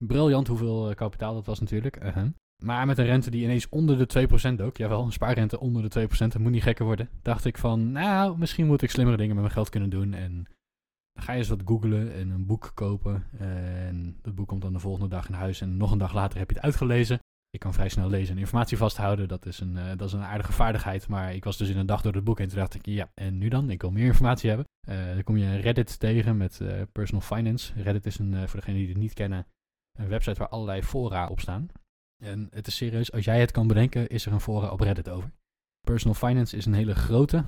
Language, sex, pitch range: Dutch, male, 100-120 Hz